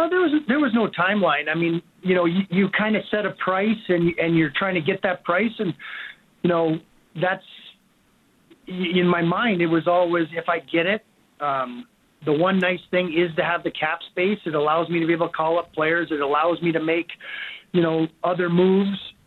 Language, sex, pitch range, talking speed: English, male, 165-190 Hz, 210 wpm